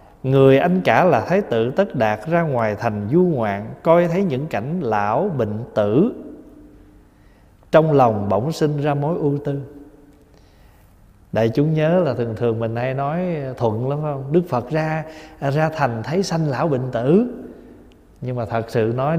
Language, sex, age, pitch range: Vietnamese, male, 20-39, 120-165 Hz